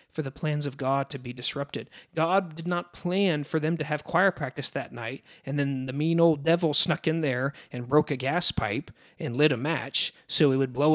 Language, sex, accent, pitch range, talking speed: English, male, American, 135-180 Hz, 230 wpm